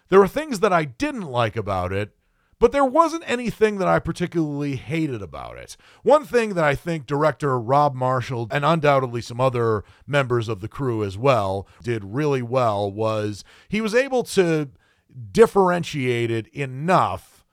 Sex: male